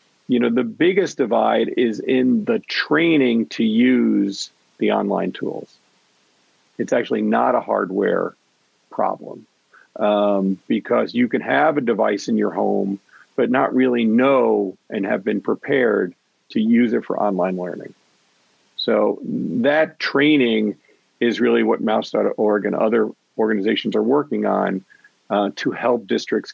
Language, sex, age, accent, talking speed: English, male, 50-69, American, 140 wpm